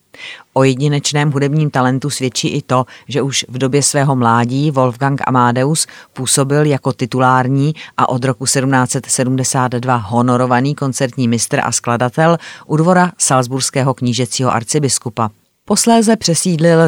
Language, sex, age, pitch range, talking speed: Czech, female, 30-49, 125-145 Hz, 120 wpm